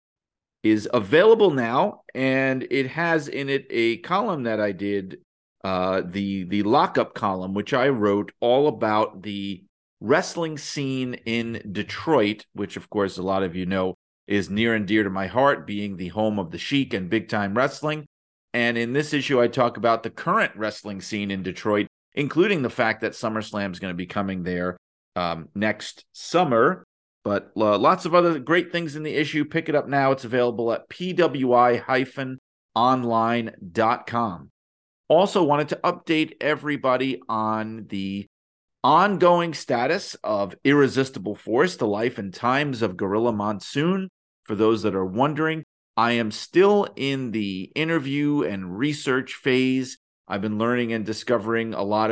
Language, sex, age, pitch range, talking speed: English, male, 40-59, 100-140 Hz, 155 wpm